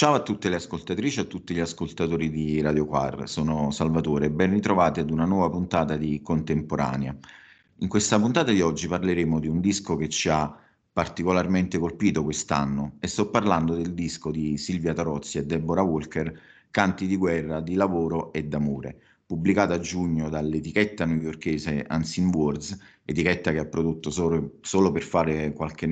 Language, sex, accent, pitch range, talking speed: Italian, male, native, 80-90 Hz, 170 wpm